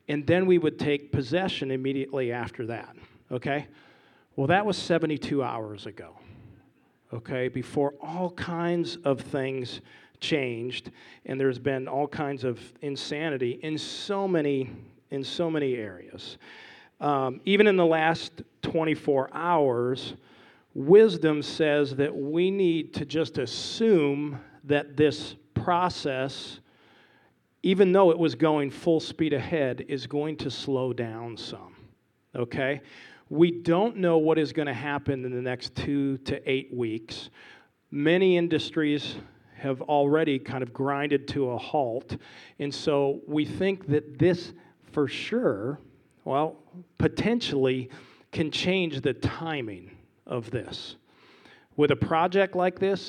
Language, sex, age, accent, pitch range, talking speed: English, male, 40-59, American, 135-165 Hz, 130 wpm